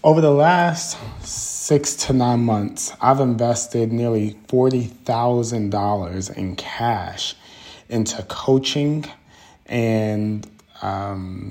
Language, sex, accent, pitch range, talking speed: English, male, American, 105-125 Hz, 90 wpm